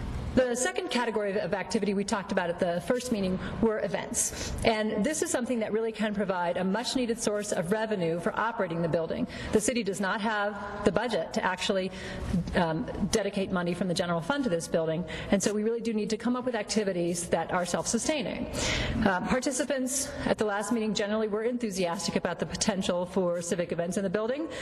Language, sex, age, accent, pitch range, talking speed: English, female, 40-59, American, 185-230 Hz, 195 wpm